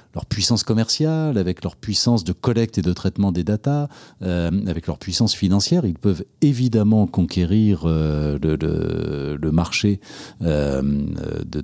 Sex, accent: male, French